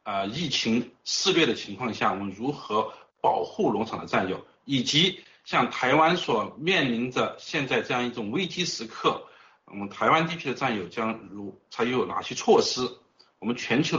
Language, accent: Chinese, native